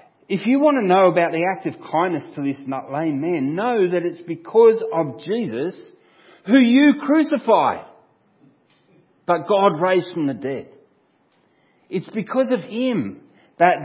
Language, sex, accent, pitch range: English, male, Australian, 165-230 Hz